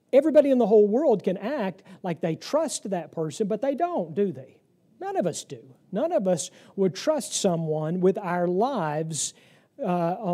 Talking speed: 180 wpm